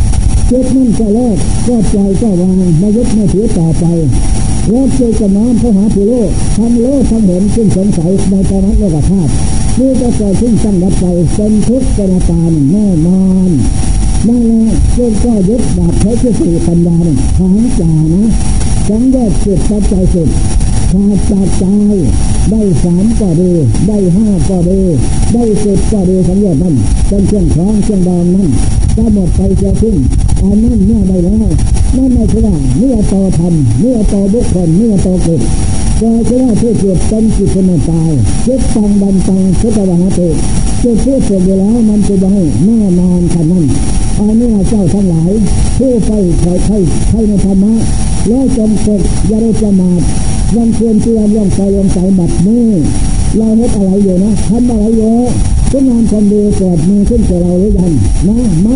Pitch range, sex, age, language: 180-220 Hz, male, 60-79, Thai